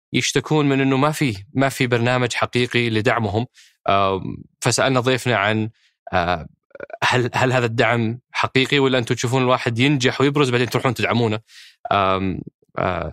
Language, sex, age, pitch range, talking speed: Arabic, male, 20-39, 115-140 Hz, 140 wpm